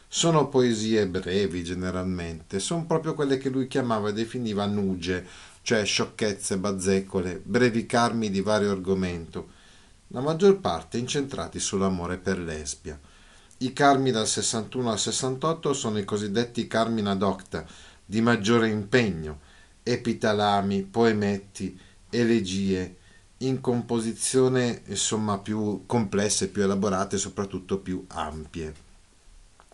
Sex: male